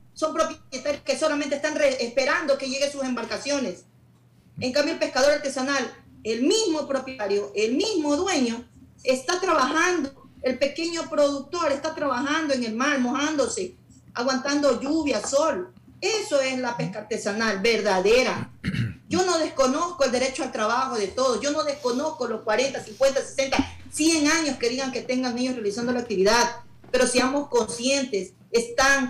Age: 40-59